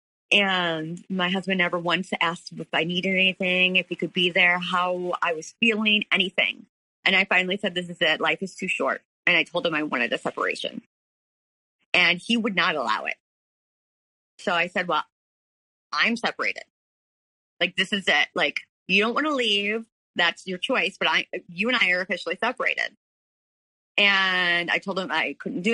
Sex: female